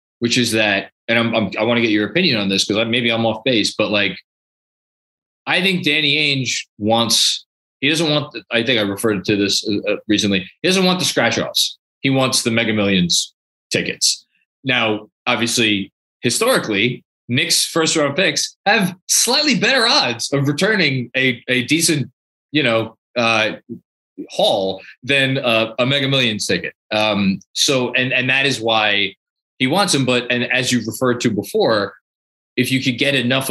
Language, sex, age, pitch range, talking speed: English, male, 20-39, 110-145 Hz, 170 wpm